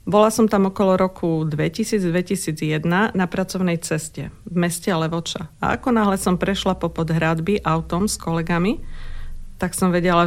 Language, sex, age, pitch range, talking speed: Slovak, female, 40-59, 165-195 Hz, 145 wpm